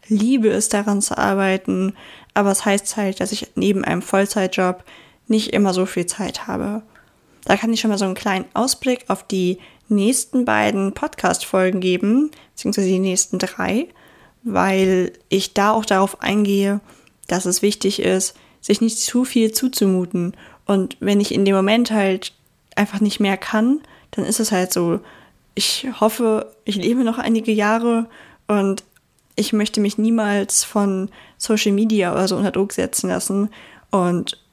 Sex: female